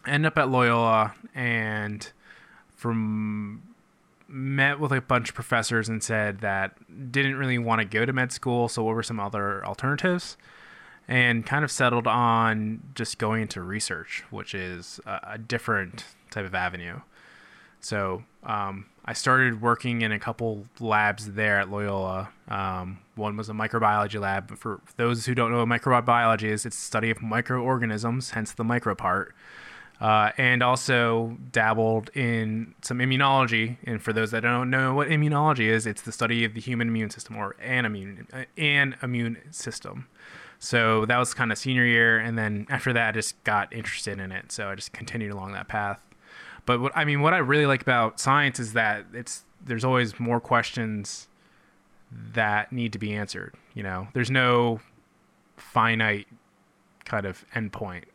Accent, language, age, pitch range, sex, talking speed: American, English, 20-39, 105-125 Hz, male, 170 wpm